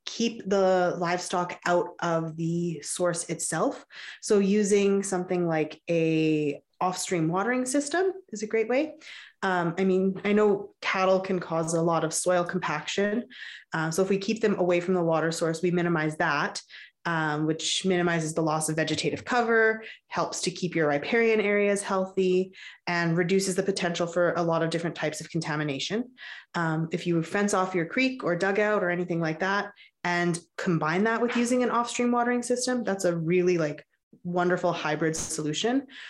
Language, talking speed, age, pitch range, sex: English, 170 wpm, 20-39, 165-200 Hz, female